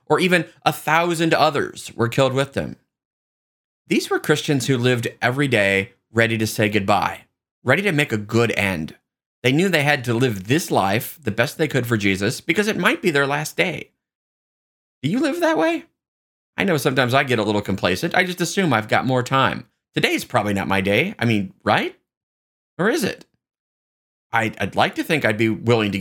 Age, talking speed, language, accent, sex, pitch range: 30-49, 200 wpm, English, American, male, 105-155 Hz